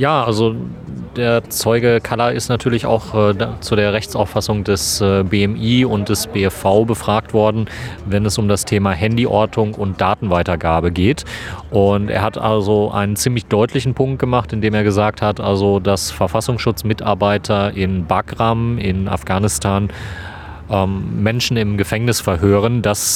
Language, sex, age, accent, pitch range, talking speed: German, male, 30-49, German, 95-110 Hz, 140 wpm